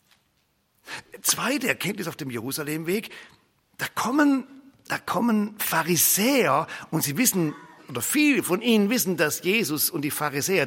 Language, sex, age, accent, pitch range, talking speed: German, male, 50-69, German, 125-175 Hz, 125 wpm